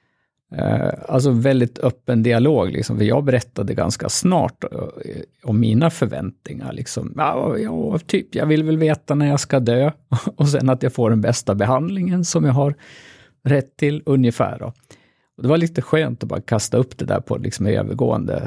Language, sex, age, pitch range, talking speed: Swedish, male, 50-69, 110-140 Hz, 170 wpm